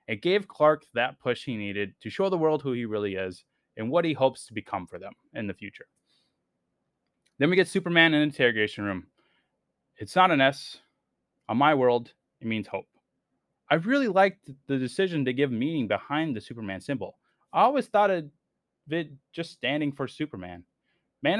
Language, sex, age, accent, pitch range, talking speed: English, male, 20-39, American, 110-165 Hz, 185 wpm